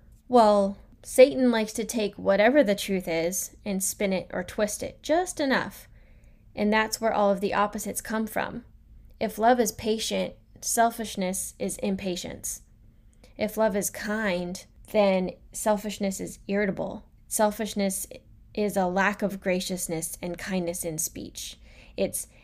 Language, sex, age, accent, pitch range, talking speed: English, female, 10-29, American, 190-225 Hz, 140 wpm